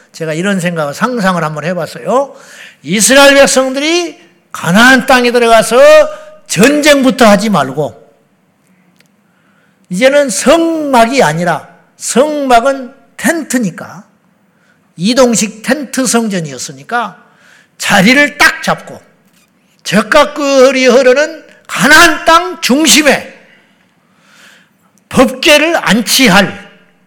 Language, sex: Korean, male